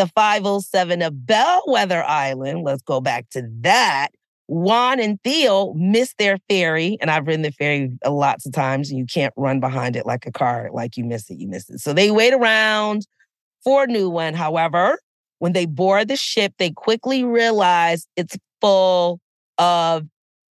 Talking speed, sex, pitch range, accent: 180 wpm, female, 155-230 Hz, American